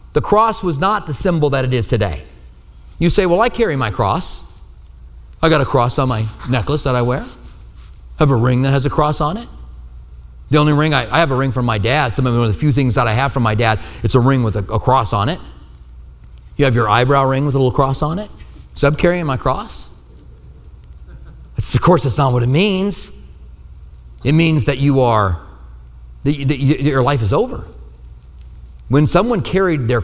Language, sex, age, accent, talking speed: English, male, 40-59, American, 215 wpm